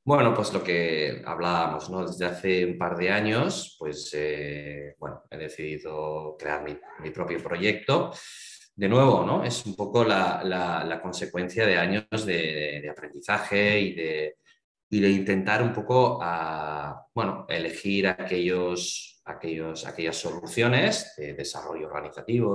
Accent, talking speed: Spanish, 145 wpm